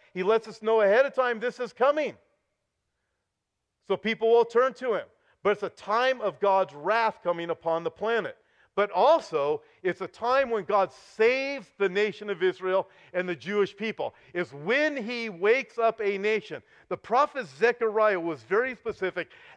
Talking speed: 170 wpm